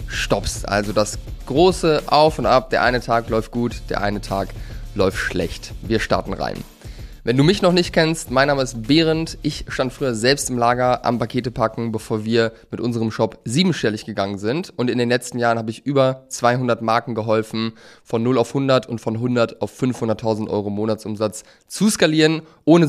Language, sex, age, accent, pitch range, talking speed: German, male, 20-39, German, 110-140 Hz, 190 wpm